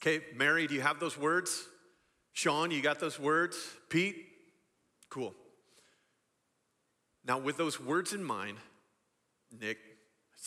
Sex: male